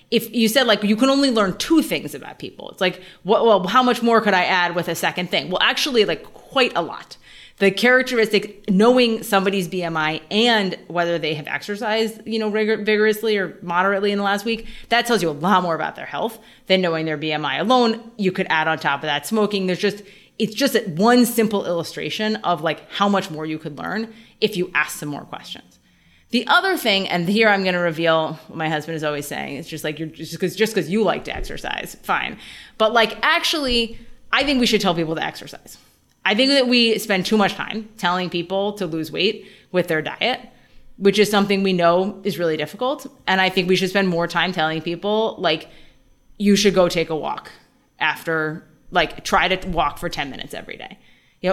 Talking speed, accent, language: 215 wpm, American, English